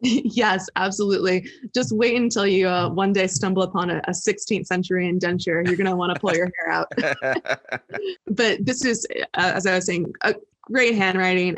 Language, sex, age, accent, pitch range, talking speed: English, female, 20-39, American, 175-205 Hz, 185 wpm